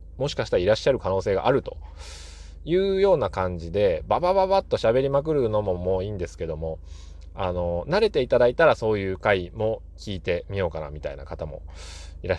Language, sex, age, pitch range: Japanese, male, 20-39, 75-110 Hz